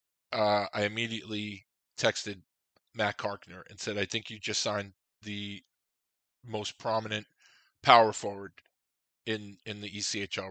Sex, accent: male, American